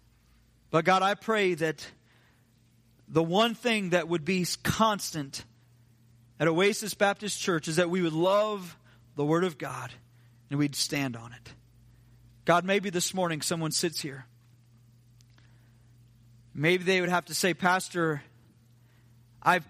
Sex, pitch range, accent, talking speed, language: male, 120-195 Hz, American, 135 wpm, English